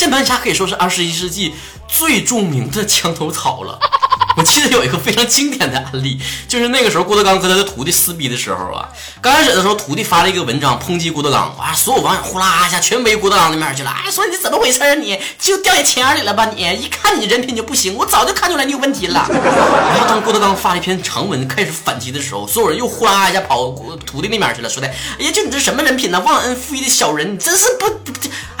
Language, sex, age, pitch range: Chinese, male, 30-49, 170-260 Hz